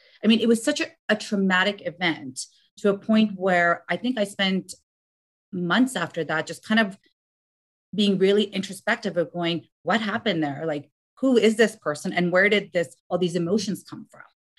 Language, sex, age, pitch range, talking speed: English, female, 40-59, 170-215 Hz, 185 wpm